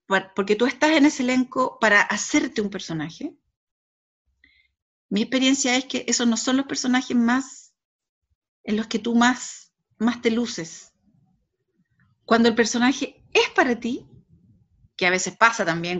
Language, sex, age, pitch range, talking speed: Spanish, female, 40-59, 215-275 Hz, 145 wpm